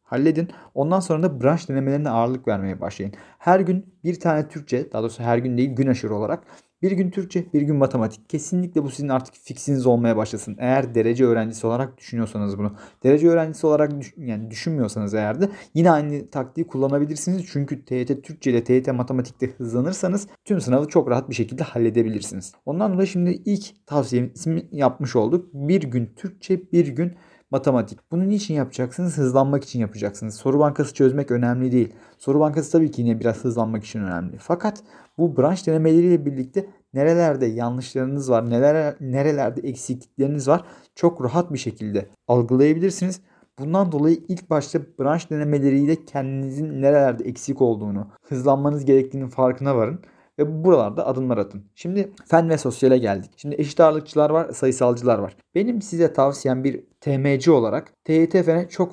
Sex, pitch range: male, 125-165 Hz